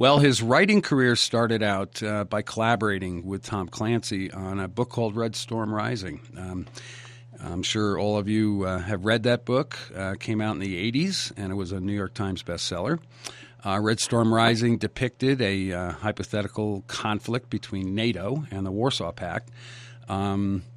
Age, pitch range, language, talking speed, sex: 50-69, 105-130 Hz, English, 175 wpm, male